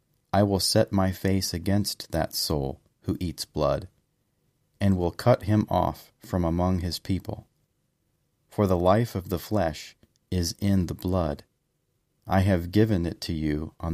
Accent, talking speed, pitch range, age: American, 160 wpm, 80-105 Hz, 40-59